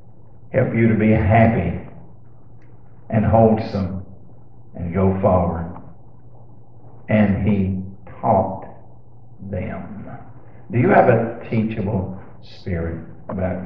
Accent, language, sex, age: American, English, male, 50-69